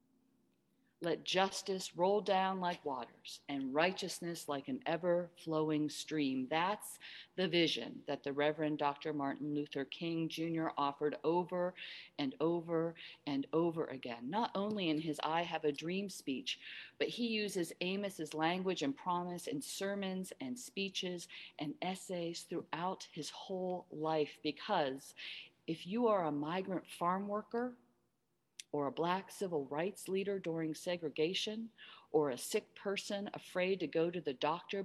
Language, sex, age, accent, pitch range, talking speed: English, female, 40-59, American, 155-195 Hz, 145 wpm